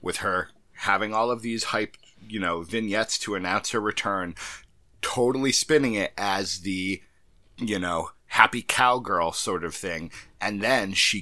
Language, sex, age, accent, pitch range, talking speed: English, male, 30-49, American, 95-125 Hz, 155 wpm